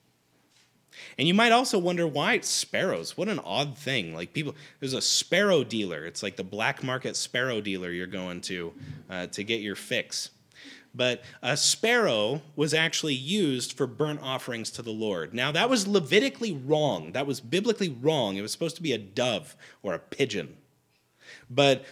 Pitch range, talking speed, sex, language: 120-175 Hz, 175 wpm, male, English